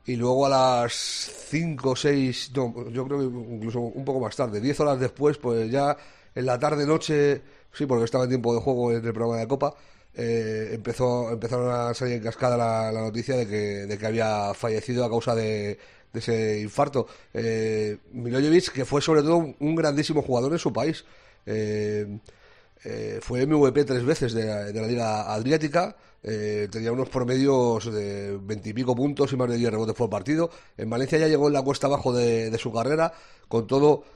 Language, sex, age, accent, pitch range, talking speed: Spanish, male, 40-59, Spanish, 110-140 Hz, 190 wpm